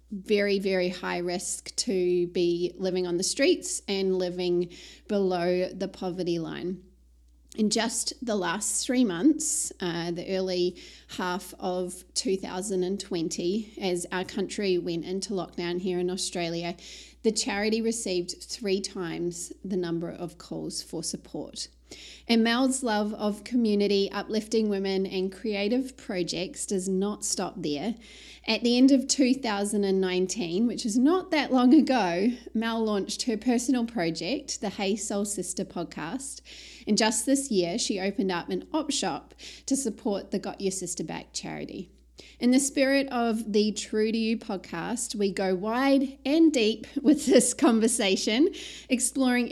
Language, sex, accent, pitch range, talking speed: English, female, Australian, 185-235 Hz, 145 wpm